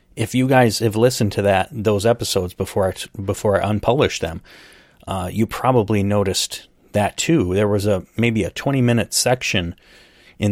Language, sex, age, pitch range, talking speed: English, male, 30-49, 95-115 Hz, 165 wpm